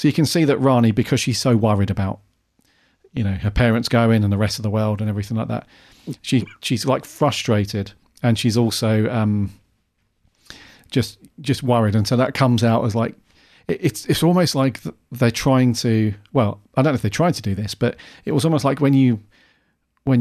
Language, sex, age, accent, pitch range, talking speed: English, male, 40-59, British, 105-125 Hz, 210 wpm